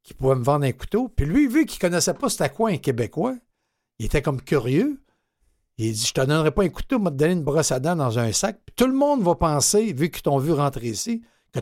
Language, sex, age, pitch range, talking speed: French, male, 60-79, 130-185 Hz, 275 wpm